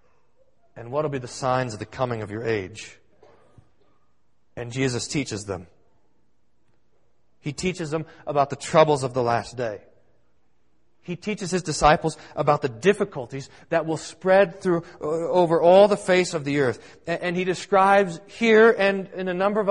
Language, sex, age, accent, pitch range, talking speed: English, male, 40-59, American, 125-175 Hz, 160 wpm